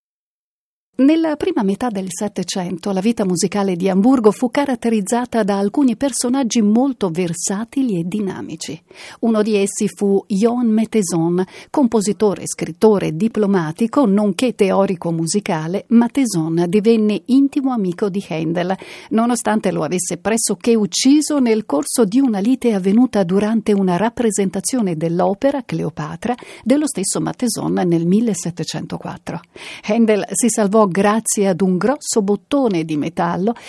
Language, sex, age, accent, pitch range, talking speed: Italian, female, 50-69, native, 190-245 Hz, 120 wpm